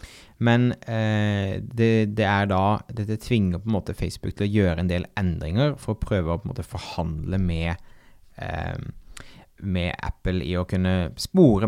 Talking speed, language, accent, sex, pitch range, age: 160 wpm, English, Norwegian, male, 90-110 Hz, 30-49